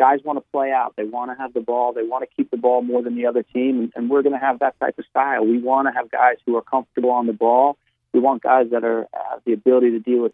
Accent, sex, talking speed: American, male, 310 wpm